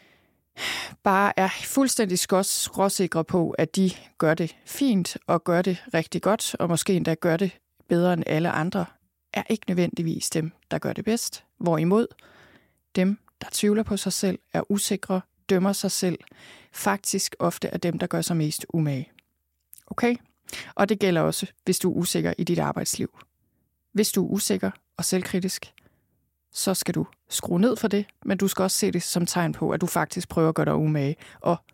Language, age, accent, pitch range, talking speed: Danish, 30-49, native, 165-200 Hz, 180 wpm